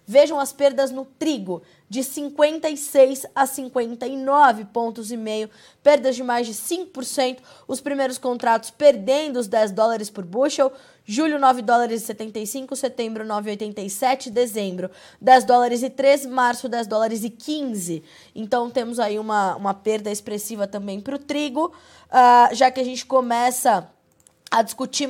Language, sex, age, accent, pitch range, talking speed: Portuguese, female, 20-39, Brazilian, 210-265 Hz, 140 wpm